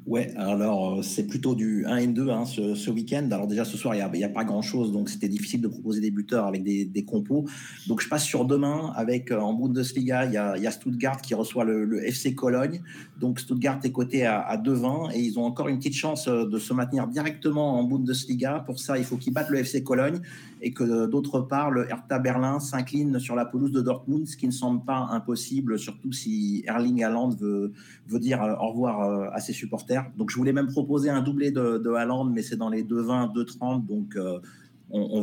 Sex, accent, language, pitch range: male, French, French, 115-135 Hz